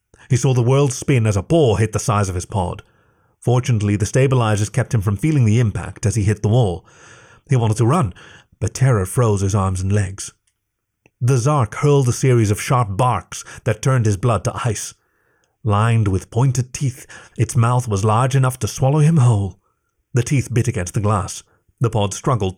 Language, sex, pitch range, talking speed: English, male, 105-130 Hz, 200 wpm